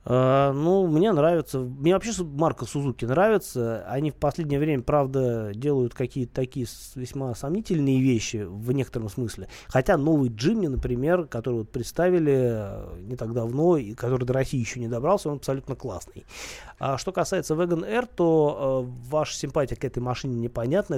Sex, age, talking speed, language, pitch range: male, 30-49, 155 wpm, Russian, 120-145 Hz